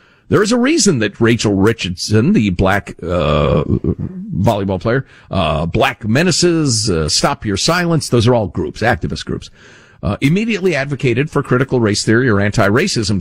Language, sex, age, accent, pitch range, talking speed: English, male, 50-69, American, 105-160 Hz, 155 wpm